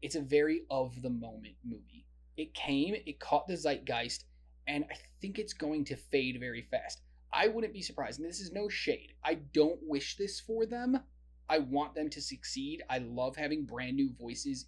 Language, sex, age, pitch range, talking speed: English, male, 20-39, 100-165 Hz, 190 wpm